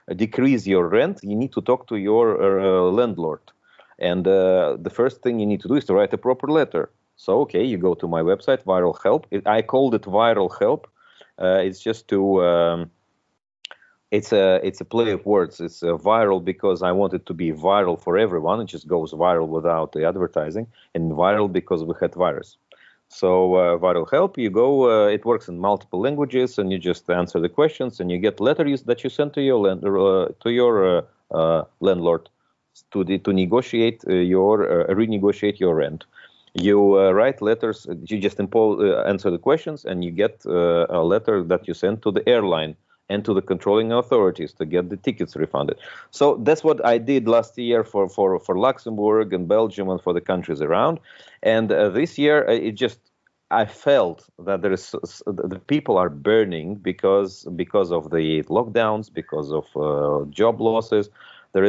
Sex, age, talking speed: male, 30-49, 195 wpm